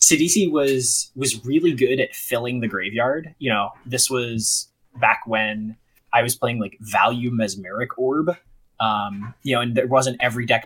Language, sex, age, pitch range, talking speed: English, male, 20-39, 110-130 Hz, 170 wpm